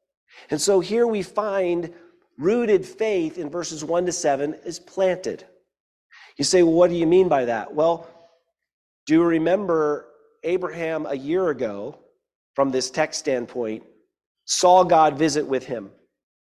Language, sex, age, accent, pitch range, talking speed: English, male, 40-59, American, 145-185 Hz, 145 wpm